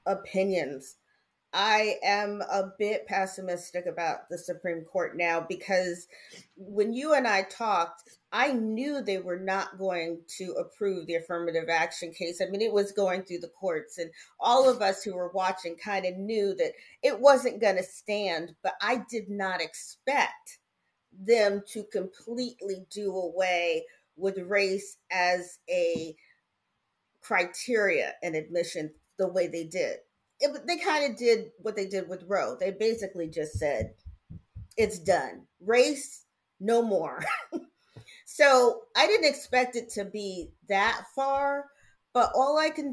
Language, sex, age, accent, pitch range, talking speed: English, female, 40-59, American, 175-230 Hz, 145 wpm